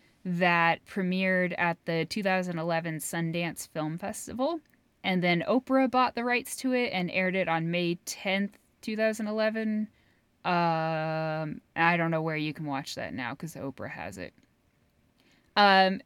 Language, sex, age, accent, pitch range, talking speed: English, female, 10-29, American, 165-215 Hz, 140 wpm